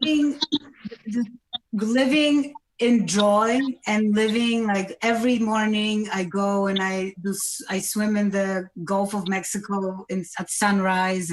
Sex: female